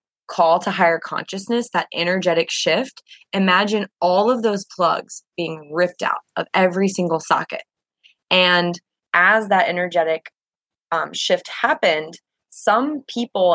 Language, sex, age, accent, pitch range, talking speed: English, female, 20-39, American, 170-210 Hz, 125 wpm